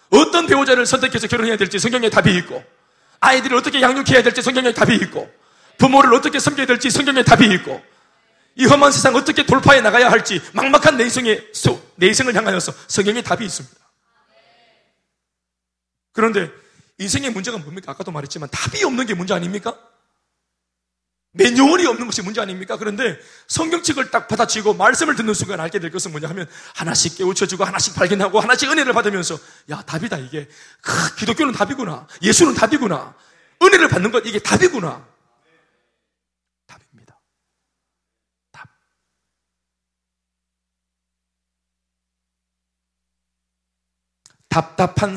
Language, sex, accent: Korean, male, native